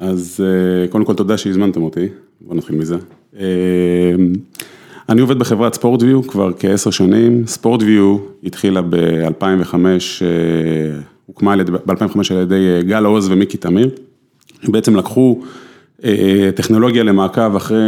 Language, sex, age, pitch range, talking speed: English, male, 30-49, 95-115 Hz, 95 wpm